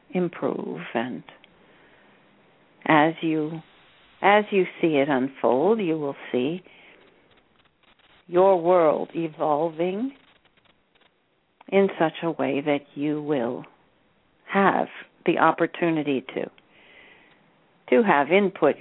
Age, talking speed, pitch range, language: 60-79, 95 wpm, 145-175 Hz, English